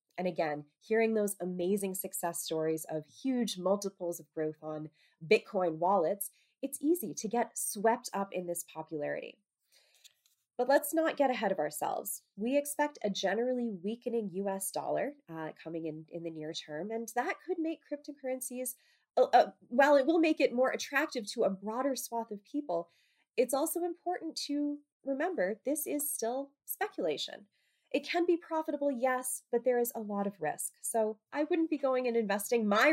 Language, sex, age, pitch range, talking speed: English, female, 20-39, 175-265 Hz, 170 wpm